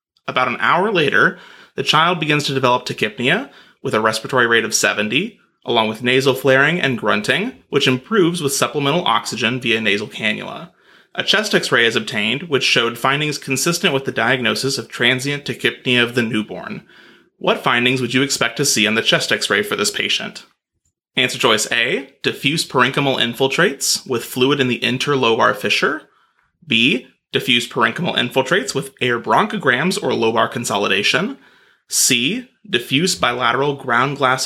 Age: 30-49